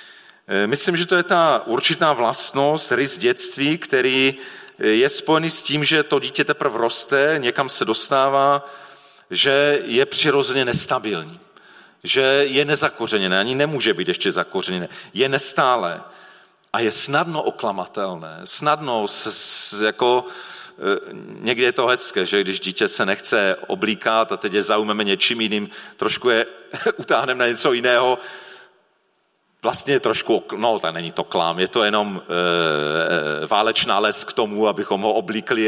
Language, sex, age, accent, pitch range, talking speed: Czech, male, 40-59, native, 110-155 Hz, 145 wpm